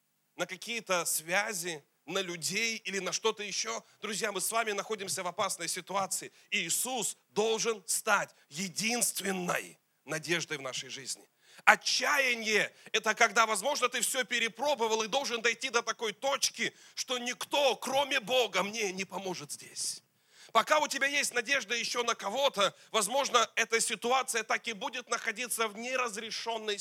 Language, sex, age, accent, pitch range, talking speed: Russian, male, 30-49, native, 195-240 Hz, 145 wpm